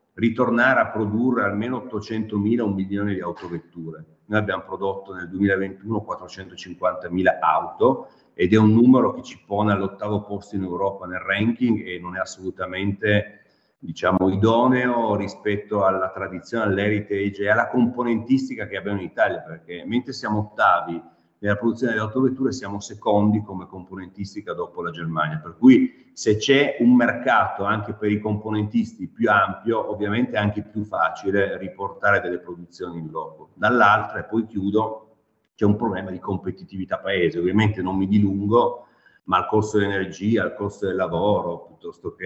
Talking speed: 150 wpm